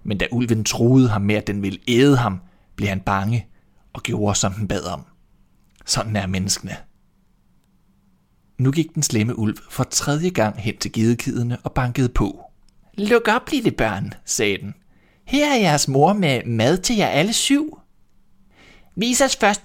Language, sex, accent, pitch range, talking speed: Danish, male, native, 105-140 Hz, 170 wpm